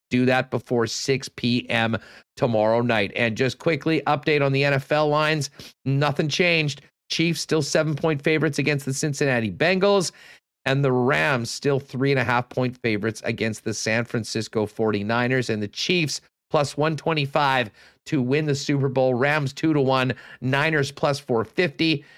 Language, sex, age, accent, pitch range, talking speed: English, male, 40-59, American, 125-155 Hz, 140 wpm